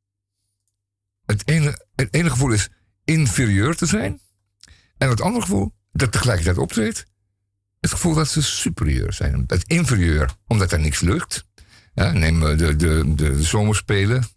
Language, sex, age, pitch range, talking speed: Dutch, male, 50-69, 90-115 Hz, 140 wpm